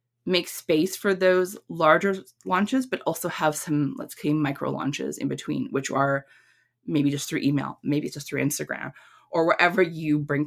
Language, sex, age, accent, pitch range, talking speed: English, female, 20-39, American, 140-205 Hz, 180 wpm